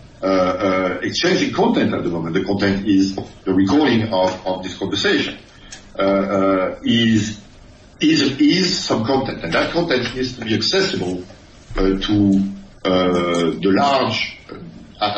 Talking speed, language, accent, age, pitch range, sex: 140 wpm, English, French, 60-79, 95-110 Hz, male